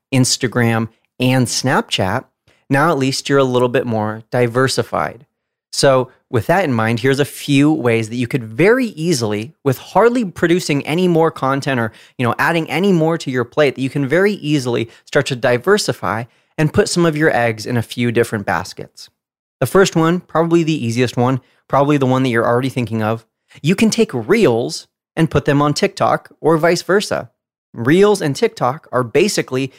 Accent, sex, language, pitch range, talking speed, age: American, male, English, 120-160 Hz, 185 wpm, 30-49